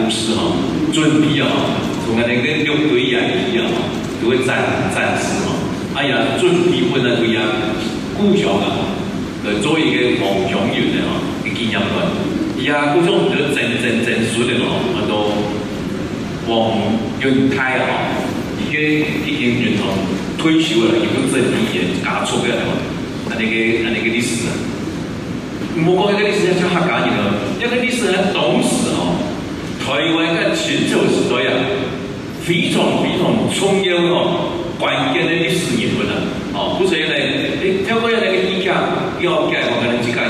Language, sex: Chinese, male